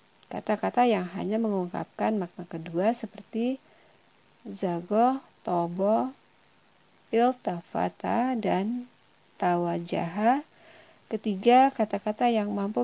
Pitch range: 185-230 Hz